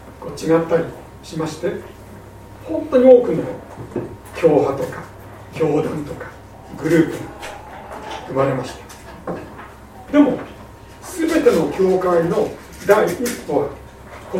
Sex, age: male, 60-79